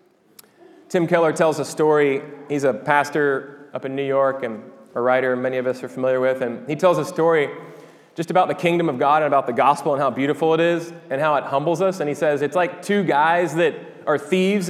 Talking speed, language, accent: 230 wpm, English, American